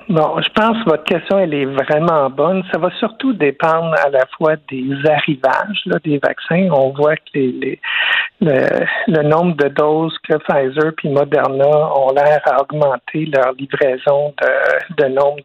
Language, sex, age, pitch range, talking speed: French, male, 60-79, 140-180 Hz, 175 wpm